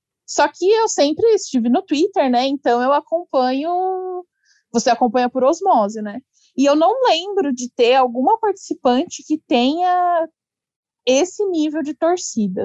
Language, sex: Portuguese, female